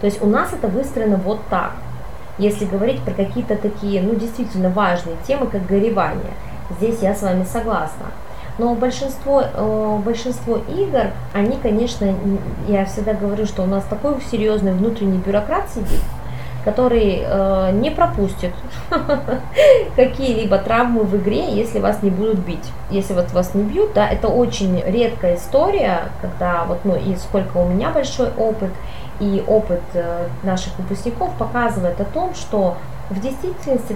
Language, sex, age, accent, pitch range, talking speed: Russian, female, 20-39, native, 190-230 Hz, 145 wpm